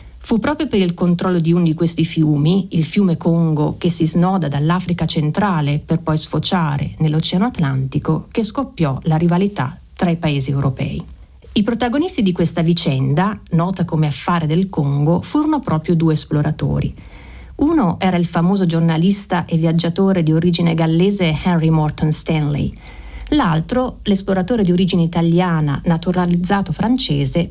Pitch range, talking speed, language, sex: 155-190 Hz, 140 wpm, Italian, female